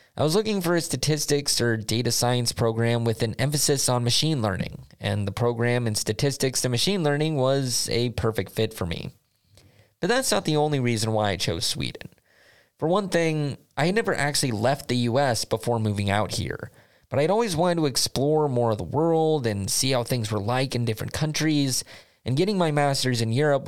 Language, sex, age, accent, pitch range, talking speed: English, male, 20-39, American, 110-150 Hz, 200 wpm